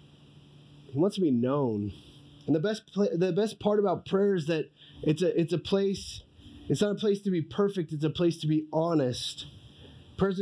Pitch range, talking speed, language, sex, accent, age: 145-185 Hz, 190 wpm, English, male, American, 20-39